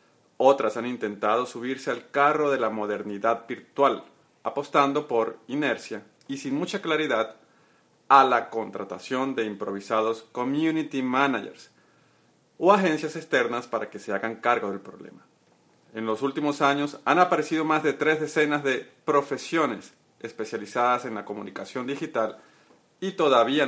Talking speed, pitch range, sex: 135 wpm, 110-150 Hz, male